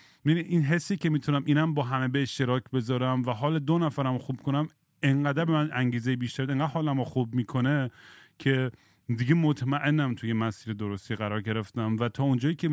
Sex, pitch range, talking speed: male, 120-150 Hz, 180 wpm